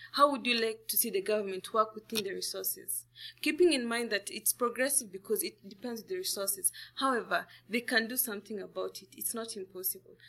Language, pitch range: English, 200-250 Hz